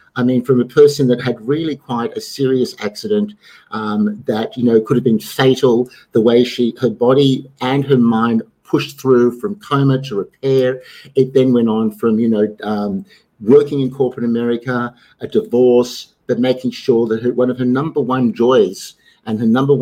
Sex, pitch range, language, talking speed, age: male, 115-140 Hz, English, 185 wpm, 50-69